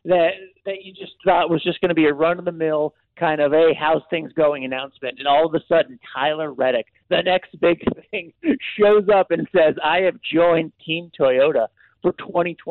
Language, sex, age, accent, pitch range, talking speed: English, male, 50-69, American, 150-200 Hz, 215 wpm